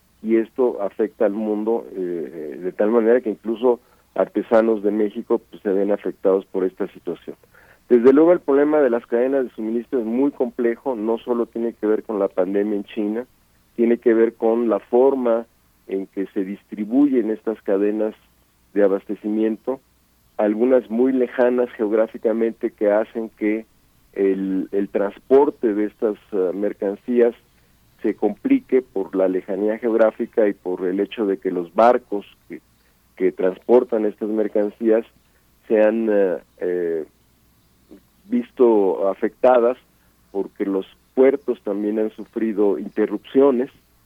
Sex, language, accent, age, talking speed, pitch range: male, Spanish, Mexican, 50-69, 135 wpm, 100-120 Hz